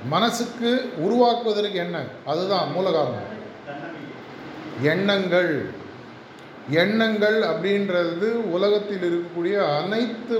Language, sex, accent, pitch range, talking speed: Tamil, male, native, 170-205 Hz, 65 wpm